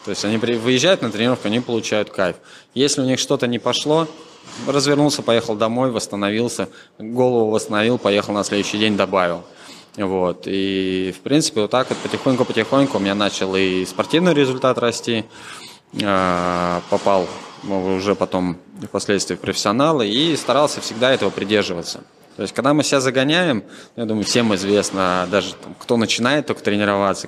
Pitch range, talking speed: 95-120 Hz, 150 wpm